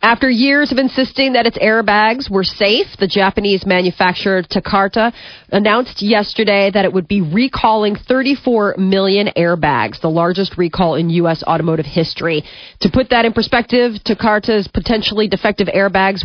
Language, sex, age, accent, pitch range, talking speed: English, female, 30-49, American, 180-215 Hz, 145 wpm